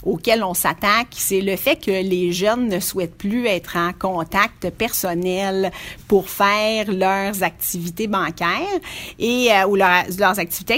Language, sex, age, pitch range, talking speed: French, female, 40-59, 185-260 Hz, 150 wpm